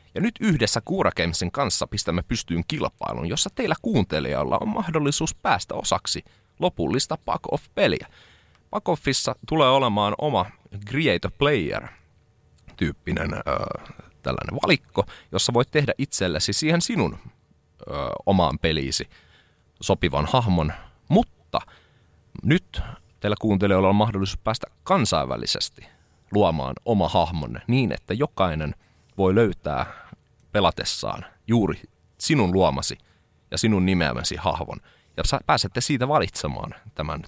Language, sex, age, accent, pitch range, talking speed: Finnish, male, 30-49, native, 85-115 Hz, 105 wpm